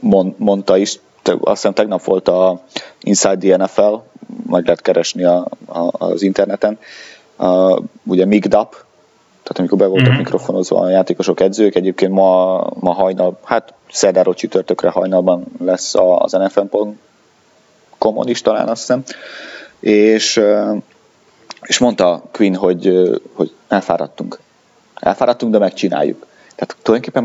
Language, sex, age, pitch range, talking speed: Hungarian, male, 30-49, 90-105 Hz, 125 wpm